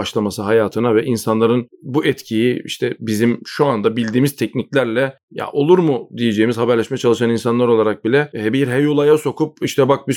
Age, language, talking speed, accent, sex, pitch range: 40-59, Turkish, 165 wpm, native, male, 115-140 Hz